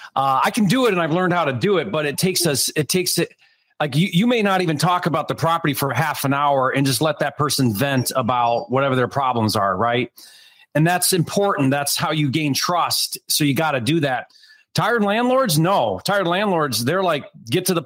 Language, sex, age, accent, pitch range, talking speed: English, male, 40-59, American, 135-175 Hz, 230 wpm